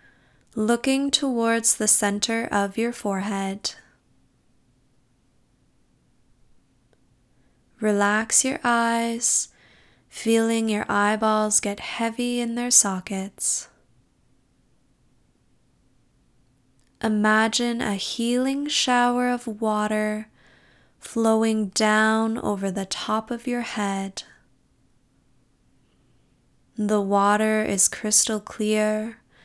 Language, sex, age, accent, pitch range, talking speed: English, female, 10-29, American, 200-225 Hz, 75 wpm